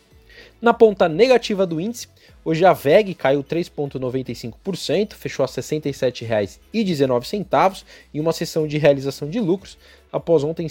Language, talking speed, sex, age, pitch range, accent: Portuguese, 135 wpm, male, 20-39, 145-185 Hz, Brazilian